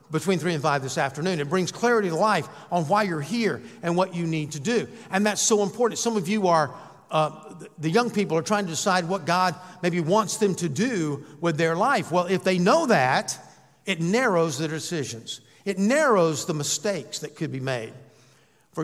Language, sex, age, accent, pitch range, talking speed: English, male, 50-69, American, 160-210 Hz, 205 wpm